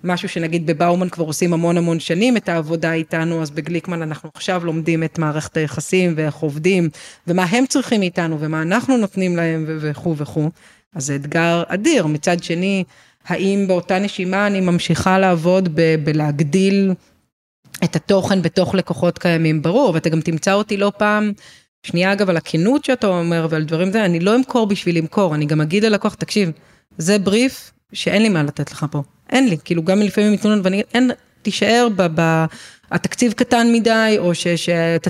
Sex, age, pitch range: female, 30-49, 165-210 Hz